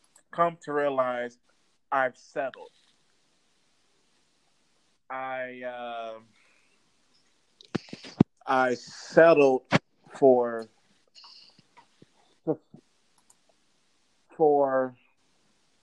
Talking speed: 40 wpm